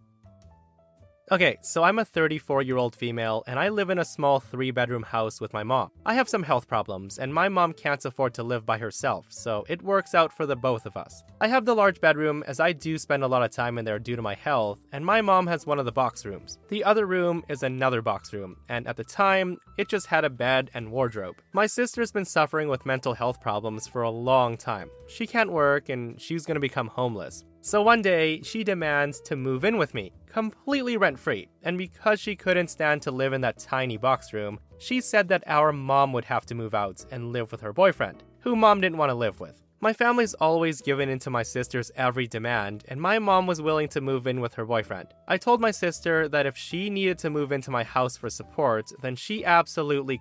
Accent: American